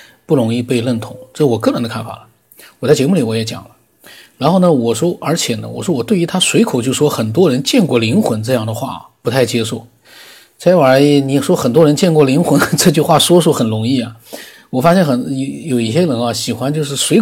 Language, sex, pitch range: Chinese, male, 115-150 Hz